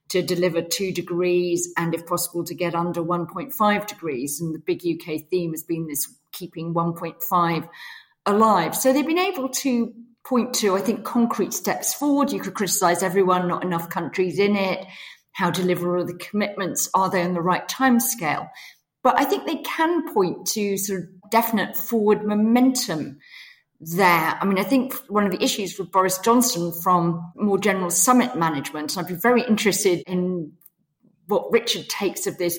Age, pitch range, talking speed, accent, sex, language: 40-59, 170-210 Hz, 175 wpm, British, female, English